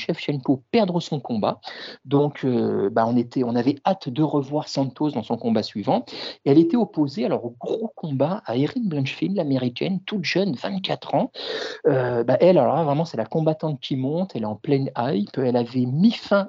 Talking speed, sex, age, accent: 200 wpm, male, 50-69, French